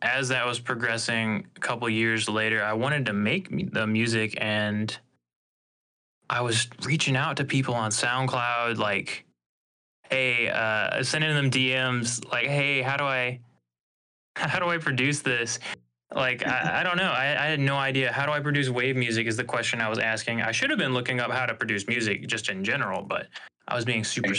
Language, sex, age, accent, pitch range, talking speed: English, male, 20-39, American, 110-130 Hz, 195 wpm